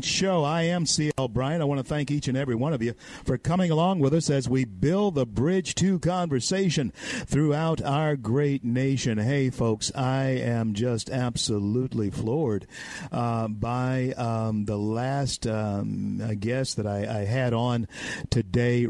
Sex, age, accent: male, 50-69, American